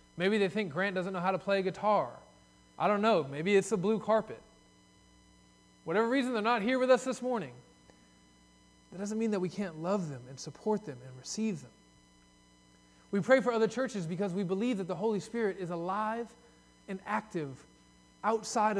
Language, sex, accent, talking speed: English, male, American, 190 wpm